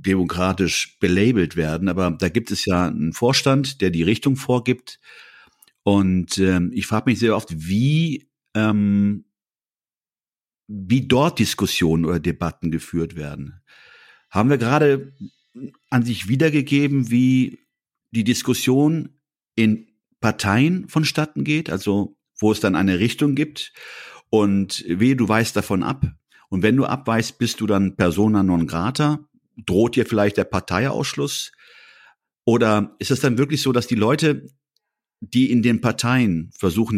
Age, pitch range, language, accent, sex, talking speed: 50-69, 95-140 Hz, German, German, male, 140 wpm